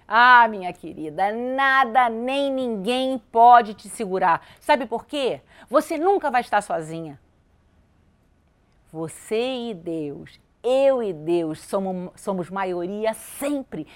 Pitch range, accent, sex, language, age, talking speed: 205-280 Hz, Brazilian, female, Portuguese, 50-69, 115 wpm